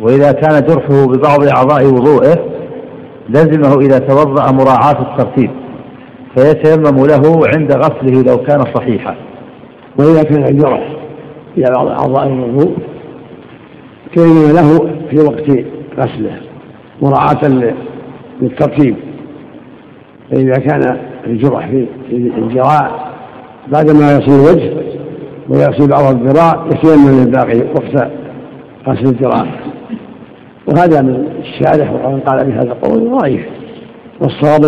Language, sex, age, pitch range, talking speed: Arabic, male, 60-79, 130-150 Hz, 100 wpm